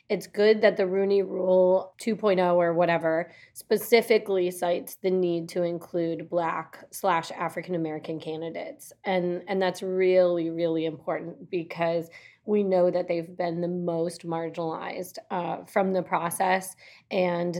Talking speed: 135 wpm